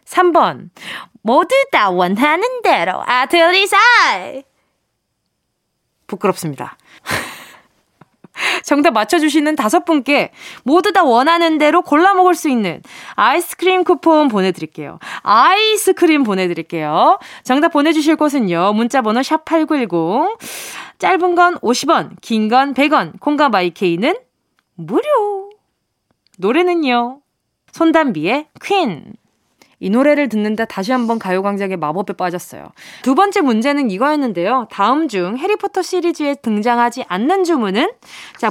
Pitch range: 220-335 Hz